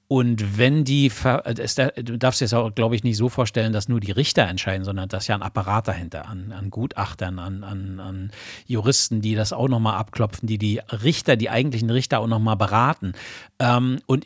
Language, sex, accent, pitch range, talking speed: German, male, German, 100-125 Hz, 195 wpm